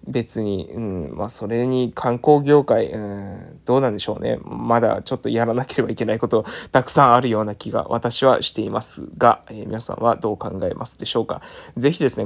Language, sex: Japanese, male